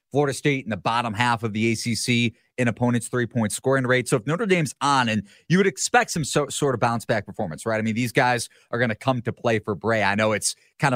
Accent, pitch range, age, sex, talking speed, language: American, 110-140 Hz, 30-49, male, 250 wpm, English